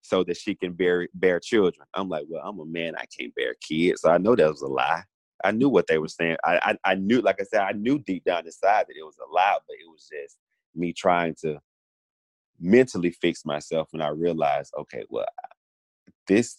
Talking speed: 230 wpm